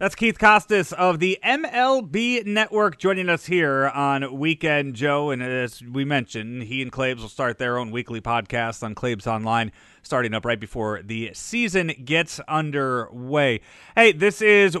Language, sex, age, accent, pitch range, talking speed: English, male, 30-49, American, 120-180 Hz, 160 wpm